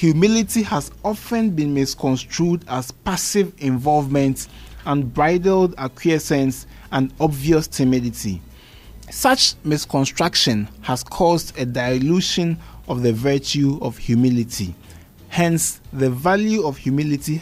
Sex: male